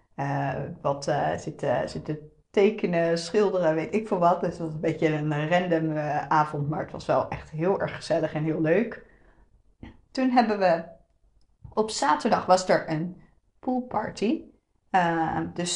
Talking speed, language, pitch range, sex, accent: 160 wpm, Dutch, 155-195 Hz, female, Dutch